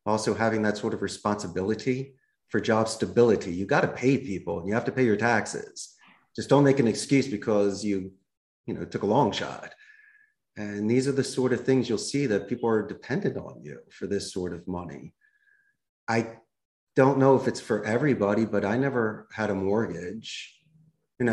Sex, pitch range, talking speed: male, 105-130 Hz, 190 wpm